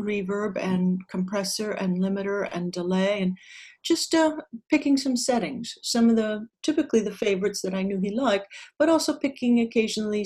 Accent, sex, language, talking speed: American, female, English, 165 wpm